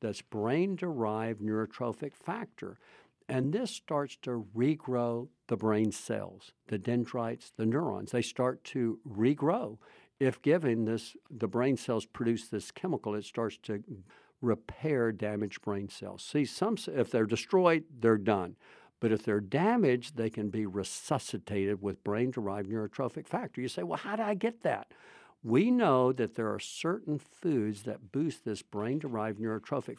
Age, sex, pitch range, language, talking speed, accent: 60-79, male, 110-165 Hz, English, 150 wpm, American